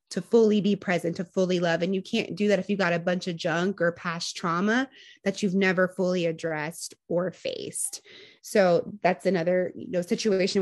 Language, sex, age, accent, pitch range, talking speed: English, female, 20-39, American, 180-230 Hz, 200 wpm